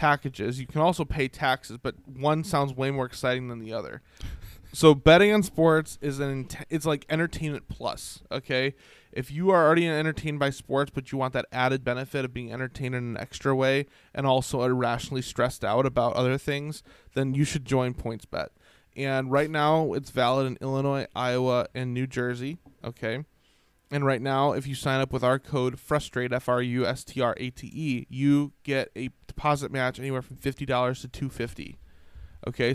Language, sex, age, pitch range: English, male, 20-39, 125-140 Hz